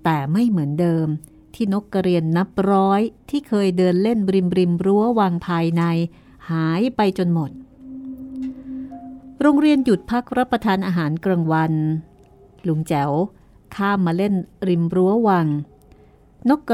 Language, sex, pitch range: Thai, female, 165-235 Hz